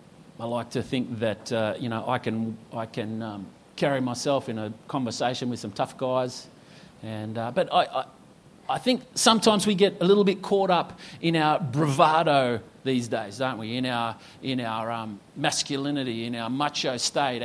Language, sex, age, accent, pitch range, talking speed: English, male, 40-59, Australian, 120-175 Hz, 185 wpm